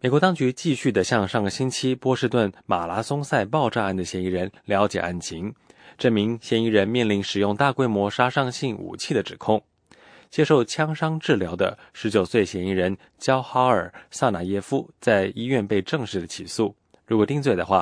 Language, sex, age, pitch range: English, male, 20-39, 95-125 Hz